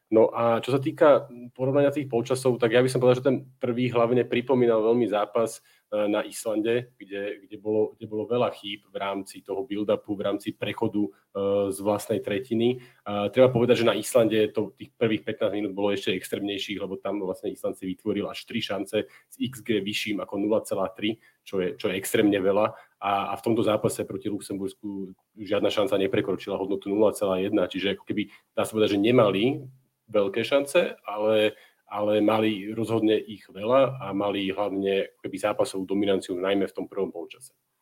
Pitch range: 105-125 Hz